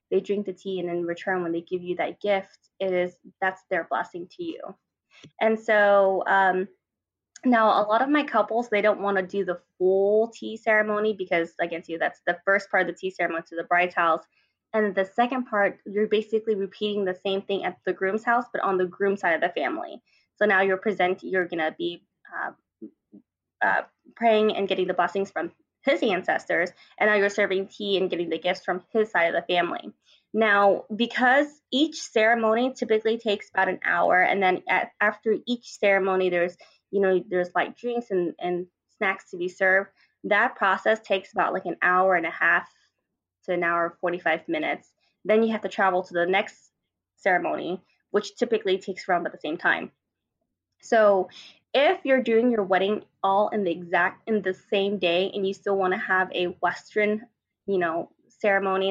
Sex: female